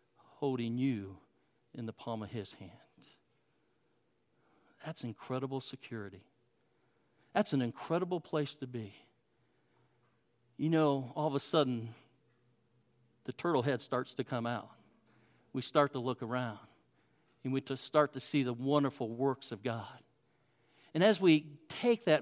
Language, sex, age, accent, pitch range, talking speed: English, male, 50-69, American, 135-220 Hz, 135 wpm